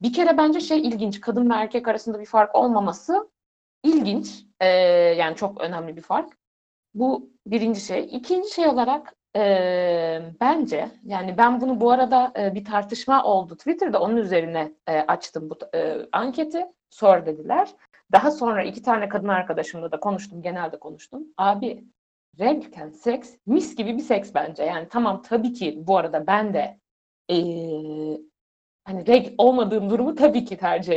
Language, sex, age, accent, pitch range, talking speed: Turkish, female, 60-79, native, 185-255 Hz, 155 wpm